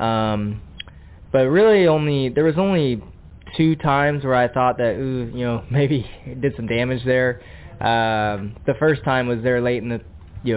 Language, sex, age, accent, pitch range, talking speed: English, male, 20-39, American, 105-130 Hz, 175 wpm